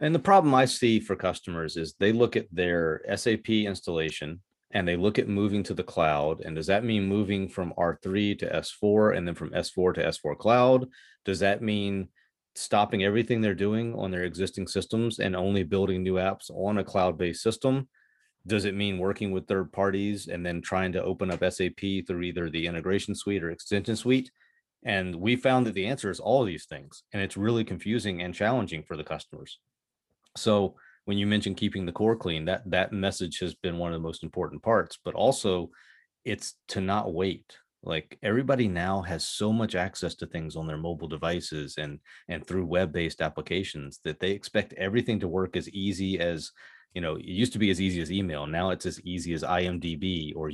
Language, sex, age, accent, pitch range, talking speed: English, male, 30-49, American, 85-105 Hz, 200 wpm